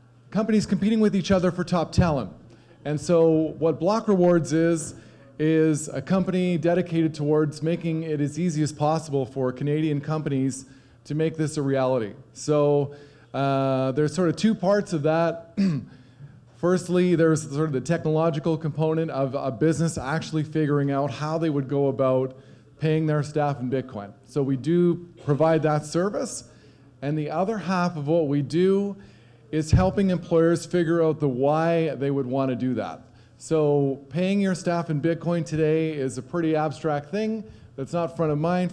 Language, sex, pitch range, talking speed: English, male, 135-165 Hz, 170 wpm